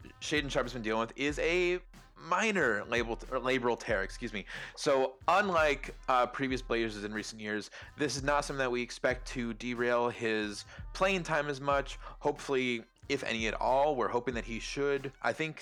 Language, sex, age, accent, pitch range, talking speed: English, male, 20-39, American, 115-145 Hz, 190 wpm